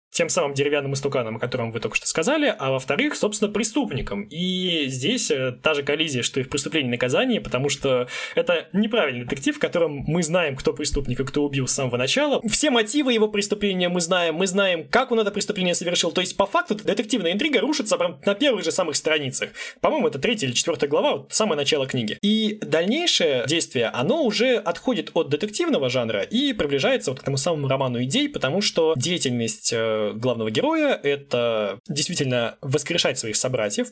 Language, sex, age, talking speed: Russian, male, 20-39, 185 wpm